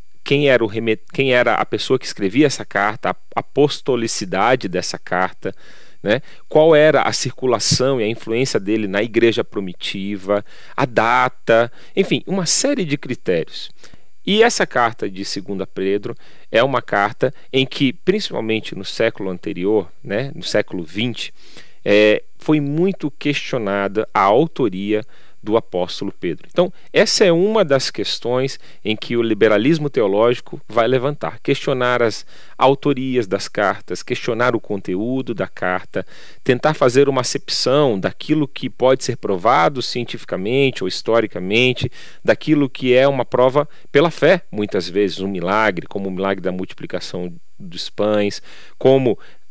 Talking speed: 140 wpm